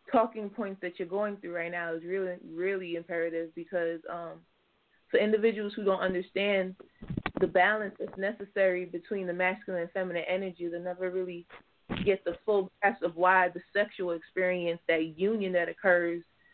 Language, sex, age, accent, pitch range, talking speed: English, female, 20-39, American, 175-195 Hz, 165 wpm